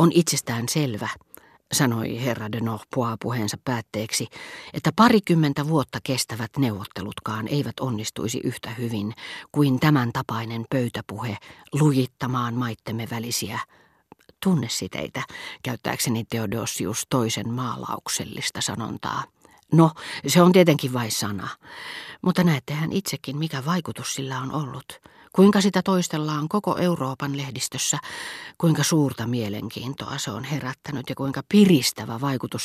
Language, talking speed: Finnish, 110 wpm